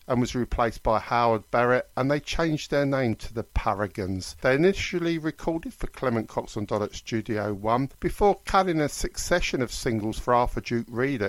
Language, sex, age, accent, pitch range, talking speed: English, male, 50-69, British, 110-150 Hz, 180 wpm